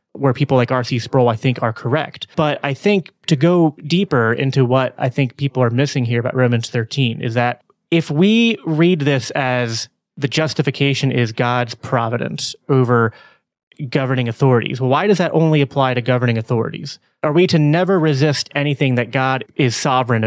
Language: English